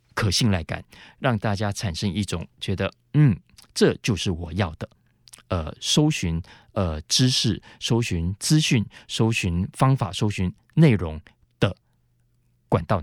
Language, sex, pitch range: Chinese, male, 95-125 Hz